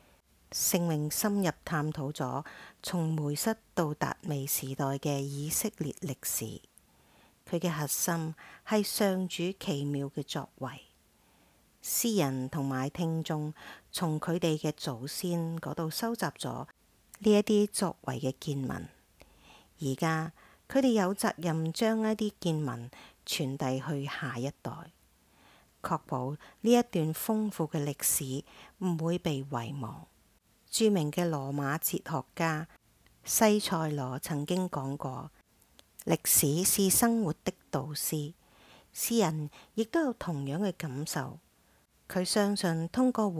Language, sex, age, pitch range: English, female, 50-69, 145-190 Hz